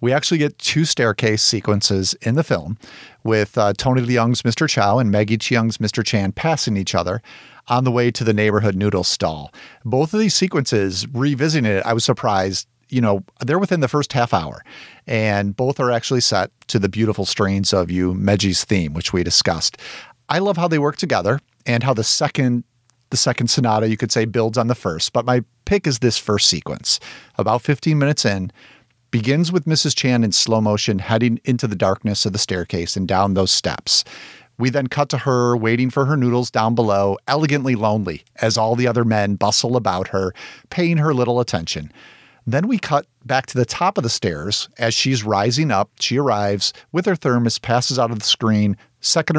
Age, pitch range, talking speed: 40-59, 105-130 Hz, 200 wpm